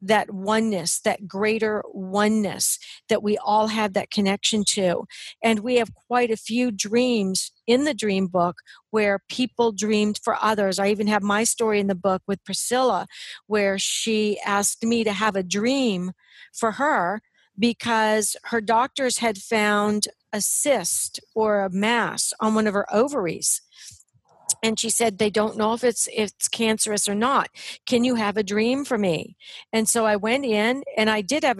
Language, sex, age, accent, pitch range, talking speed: English, female, 40-59, American, 205-235 Hz, 175 wpm